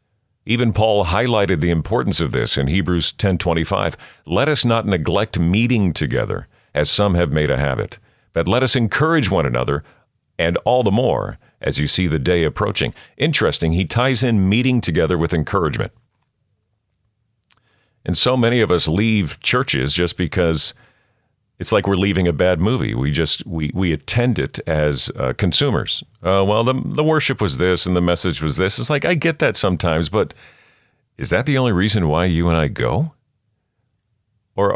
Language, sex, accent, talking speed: English, male, American, 175 wpm